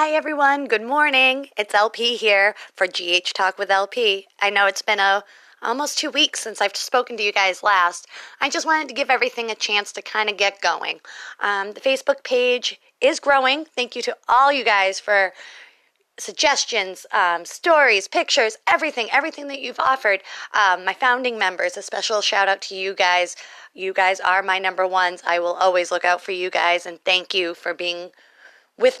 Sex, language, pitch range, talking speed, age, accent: female, English, 185-240 Hz, 190 wpm, 30-49, American